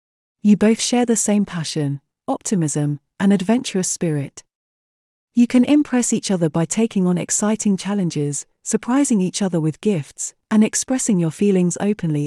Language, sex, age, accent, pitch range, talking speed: English, female, 40-59, British, 165-225 Hz, 145 wpm